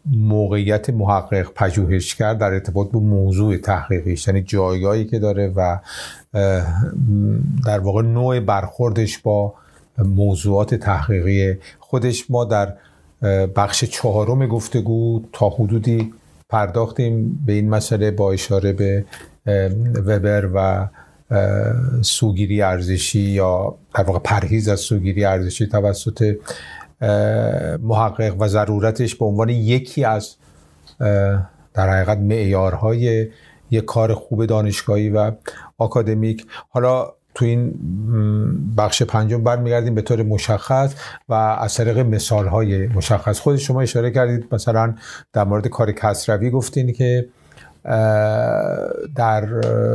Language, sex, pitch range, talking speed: Persian, male, 100-120 Hz, 110 wpm